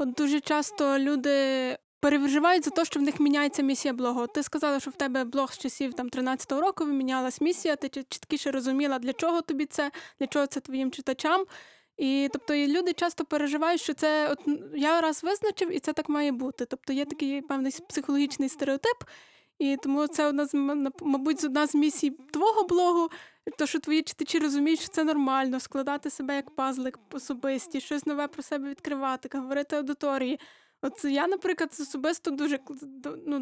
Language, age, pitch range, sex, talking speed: Ukrainian, 20-39, 275-315 Hz, female, 175 wpm